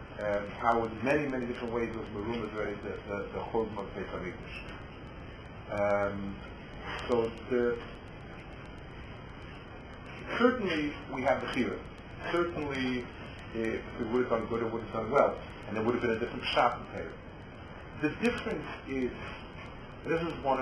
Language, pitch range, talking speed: English, 110-140 Hz, 145 wpm